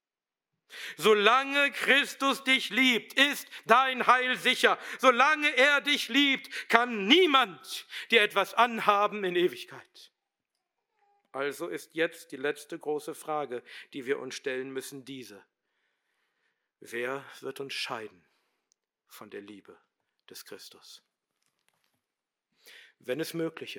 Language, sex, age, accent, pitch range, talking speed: German, male, 50-69, German, 170-275 Hz, 110 wpm